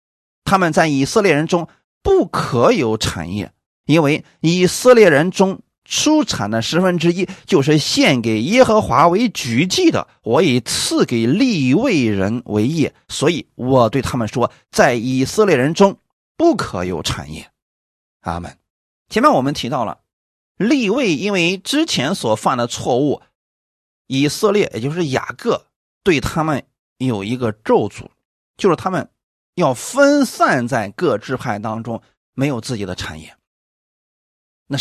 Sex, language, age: male, Chinese, 30-49